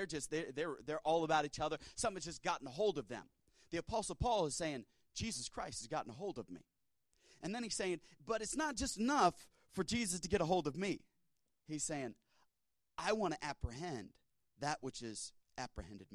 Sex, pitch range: male, 155-210 Hz